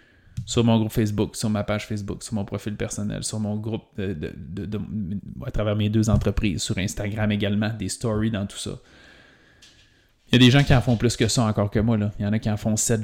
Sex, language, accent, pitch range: male, French, Canadian, 105-125 Hz